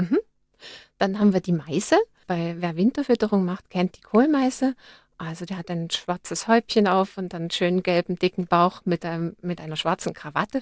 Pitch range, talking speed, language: 175-205 Hz, 165 wpm, German